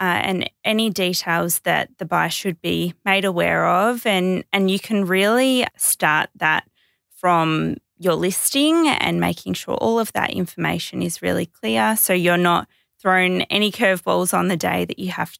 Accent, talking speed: Australian, 170 wpm